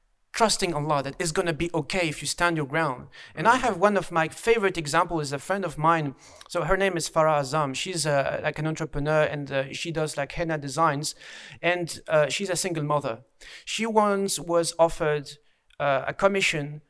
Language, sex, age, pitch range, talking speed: English, male, 40-59, 150-180 Hz, 195 wpm